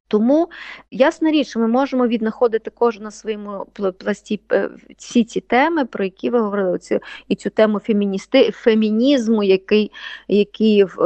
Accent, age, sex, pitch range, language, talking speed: native, 30-49, female, 195-235 Hz, Ukrainian, 130 wpm